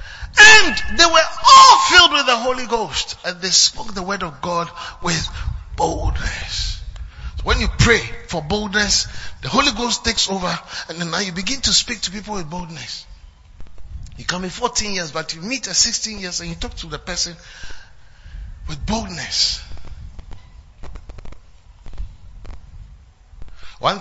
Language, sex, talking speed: English, male, 150 wpm